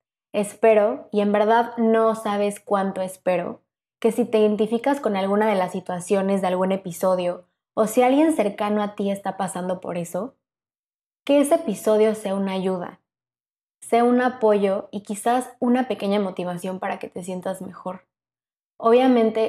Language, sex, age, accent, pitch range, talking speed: Spanish, female, 20-39, Mexican, 190-215 Hz, 155 wpm